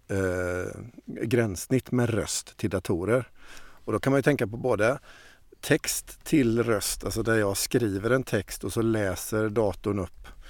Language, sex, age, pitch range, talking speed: Swedish, male, 50-69, 95-120 Hz, 155 wpm